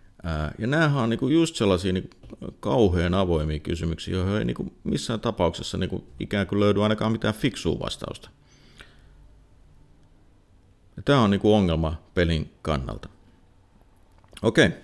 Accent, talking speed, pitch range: native, 100 wpm, 80-105 Hz